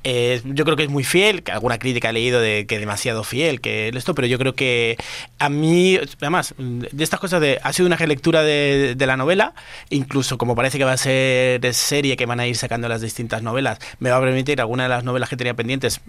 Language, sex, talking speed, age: Spanish, male, 245 wpm, 30-49